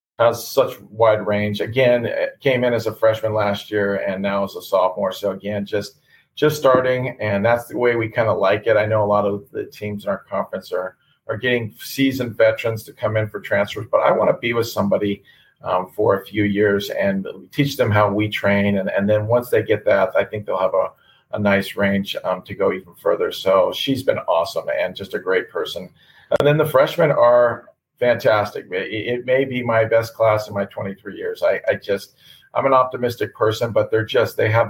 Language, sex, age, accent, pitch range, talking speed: English, male, 40-59, American, 105-130 Hz, 220 wpm